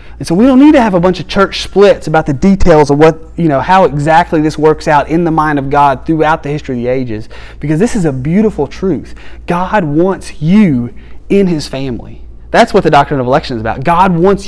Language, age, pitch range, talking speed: English, 30-49, 130-185 Hz, 235 wpm